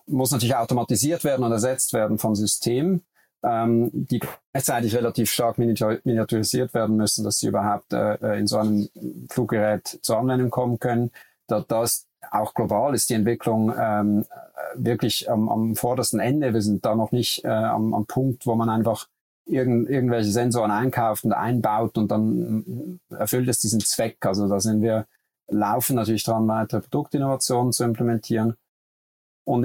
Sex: male